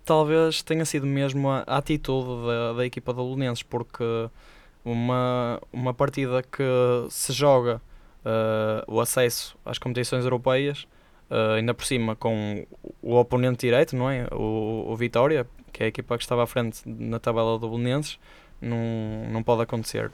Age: 10-29